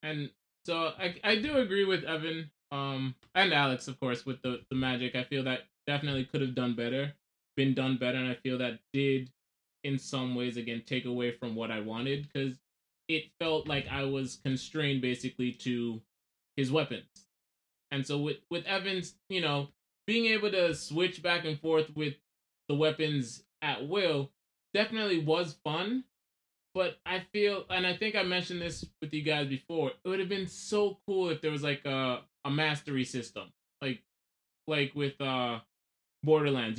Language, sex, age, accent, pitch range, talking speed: English, male, 20-39, American, 125-170 Hz, 175 wpm